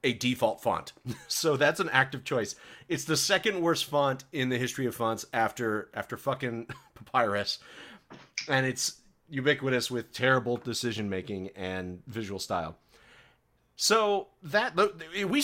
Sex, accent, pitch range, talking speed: male, American, 115-155 Hz, 135 wpm